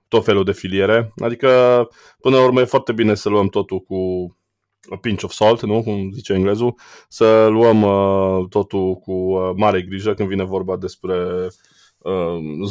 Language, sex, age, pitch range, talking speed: Romanian, male, 20-39, 95-115 Hz, 165 wpm